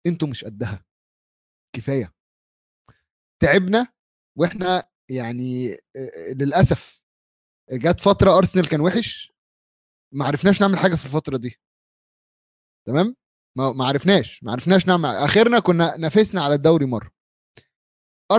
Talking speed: 105 wpm